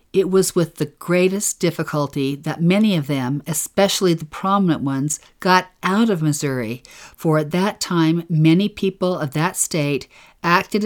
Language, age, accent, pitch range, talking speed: English, 50-69, American, 150-185 Hz, 155 wpm